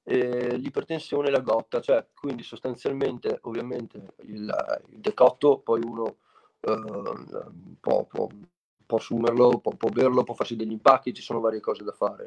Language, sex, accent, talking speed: Italian, male, native, 155 wpm